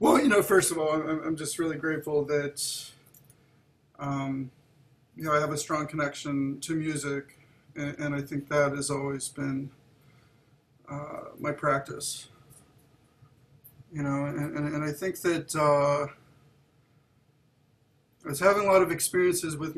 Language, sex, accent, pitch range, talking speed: English, male, American, 140-160 Hz, 145 wpm